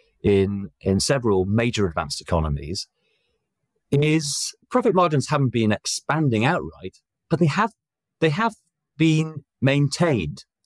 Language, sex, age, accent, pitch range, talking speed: English, male, 40-59, British, 100-150 Hz, 115 wpm